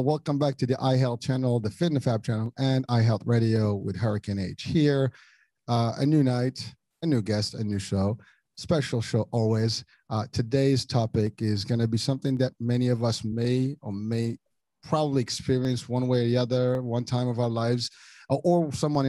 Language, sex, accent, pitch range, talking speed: English, male, American, 115-140 Hz, 190 wpm